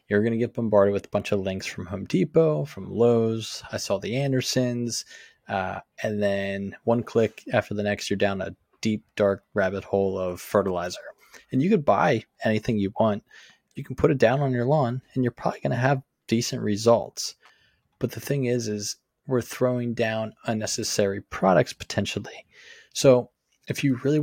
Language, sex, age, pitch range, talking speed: English, male, 20-39, 100-125 Hz, 185 wpm